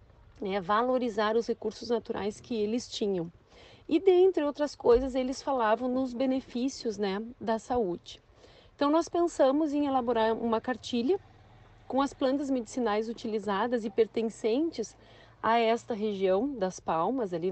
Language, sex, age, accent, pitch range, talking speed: Portuguese, female, 40-59, Brazilian, 200-260 Hz, 135 wpm